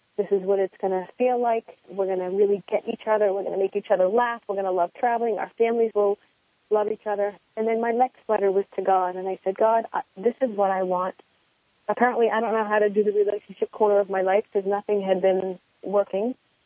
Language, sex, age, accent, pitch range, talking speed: English, female, 40-59, American, 195-220 Hz, 245 wpm